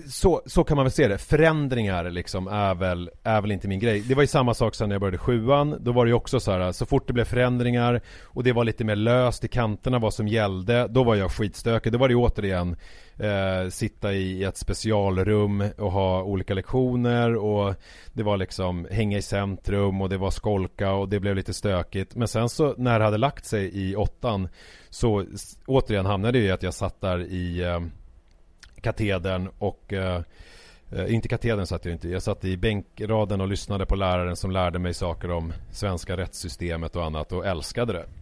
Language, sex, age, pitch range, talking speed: Swedish, male, 30-49, 95-120 Hz, 205 wpm